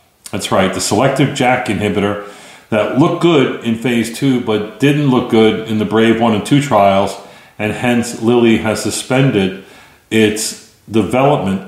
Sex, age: male, 40-59